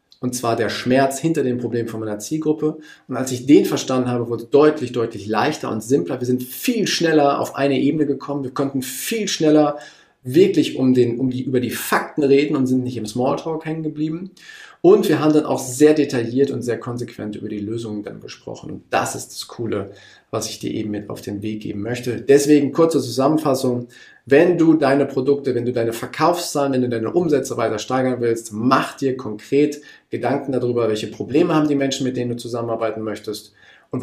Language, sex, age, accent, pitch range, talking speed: German, male, 40-59, German, 120-150 Hz, 205 wpm